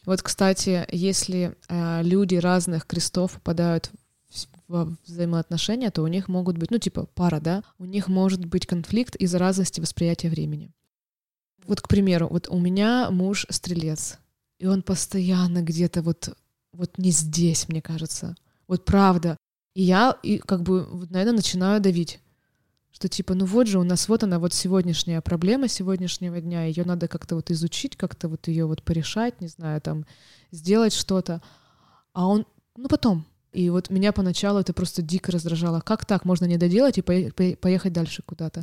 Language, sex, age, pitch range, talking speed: Russian, female, 20-39, 170-200 Hz, 165 wpm